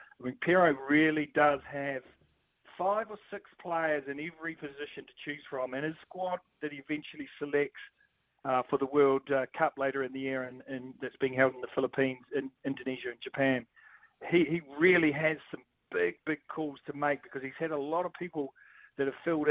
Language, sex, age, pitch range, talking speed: English, male, 50-69, 135-160 Hz, 200 wpm